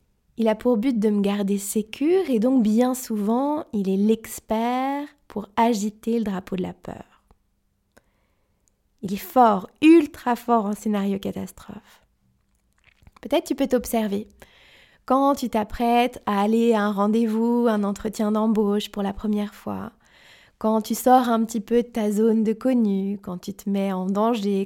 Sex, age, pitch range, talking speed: female, 20-39, 210-240 Hz, 160 wpm